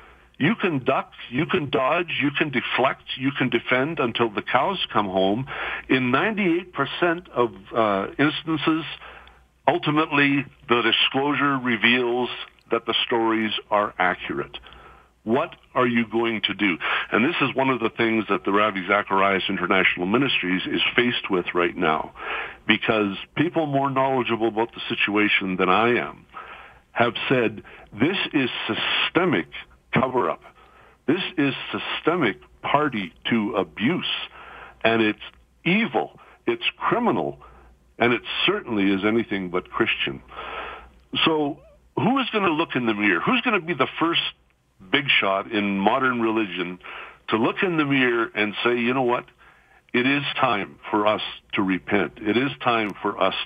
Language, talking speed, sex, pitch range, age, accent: English, 145 wpm, male, 105-140 Hz, 60-79, American